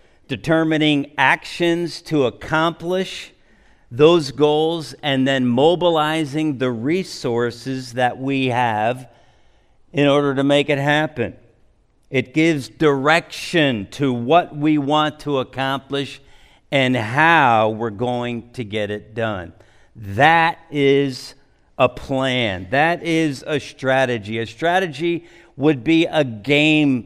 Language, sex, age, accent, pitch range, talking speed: English, male, 50-69, American, 130-170 Hz, 115 wpm